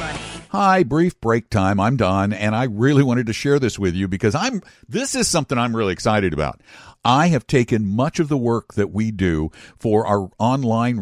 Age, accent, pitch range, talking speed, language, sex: 60-79, American, 105-160 Hz, 200 wpm, English, male